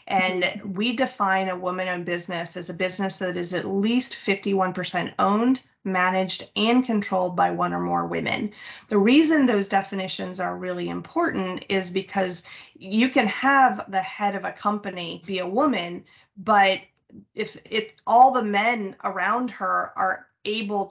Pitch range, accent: 180-210 Hz, American